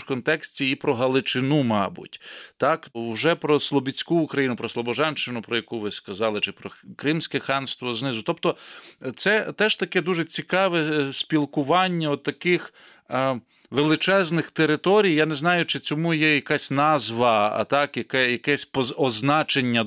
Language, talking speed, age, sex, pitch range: English, 135 wpm, 40-59, male, 115-155 Hz